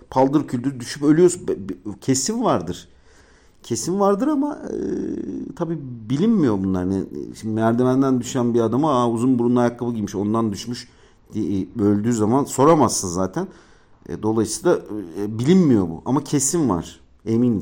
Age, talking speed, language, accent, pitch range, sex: 50-69, 135 wpm, Turkish, native, 90-130 Hz, male